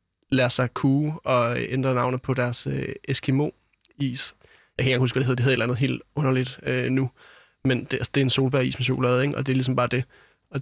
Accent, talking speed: native, 245 wpm